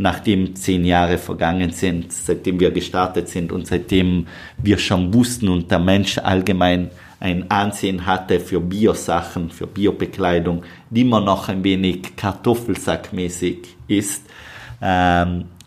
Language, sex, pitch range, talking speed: German, male, 90-110 Hz, 130 wpm